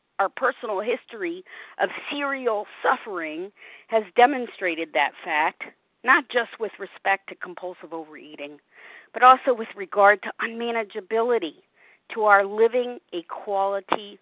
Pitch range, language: 205-265 Hz, English